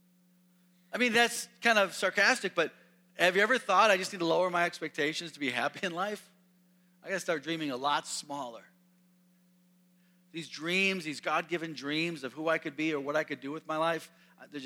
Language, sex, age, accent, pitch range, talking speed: English, male, 40-59, American, 150-180 Hz, 205 wpm